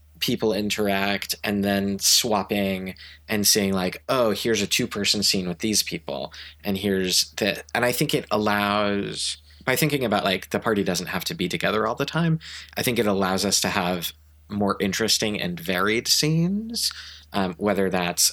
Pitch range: 90-105 Hz